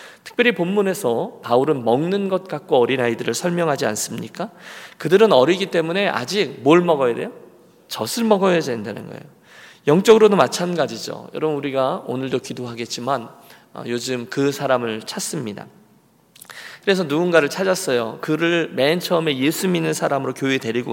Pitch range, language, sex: 120-170 Hz, Korean, male